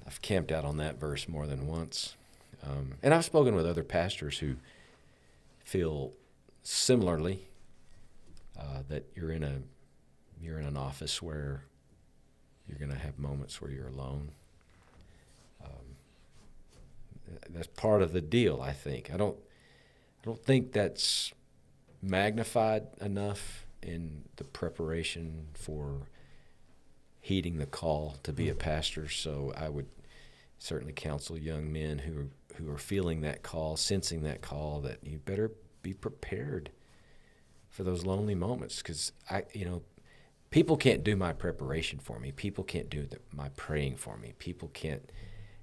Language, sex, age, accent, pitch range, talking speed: English, male, 50-69, American, 70-95 Hz, 145 wpm